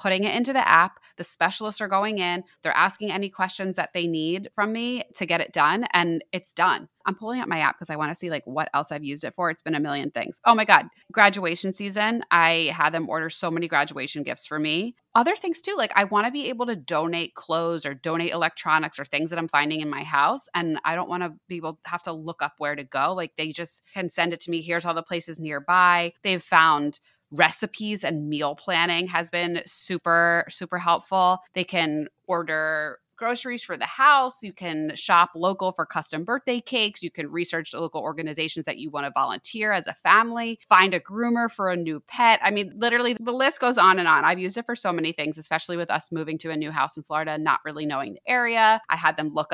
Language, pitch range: English, 155-200 Hz